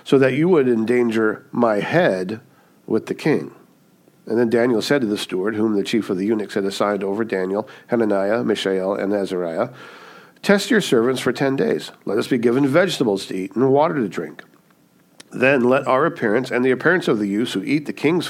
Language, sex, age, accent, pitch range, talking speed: English, male, 50-69, American, 110-140 Hz, 205 wpm